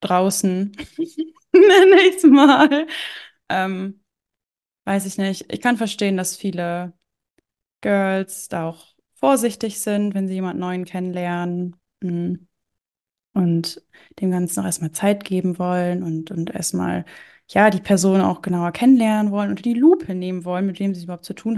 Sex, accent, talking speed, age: female, German, 140 wpm, 20-39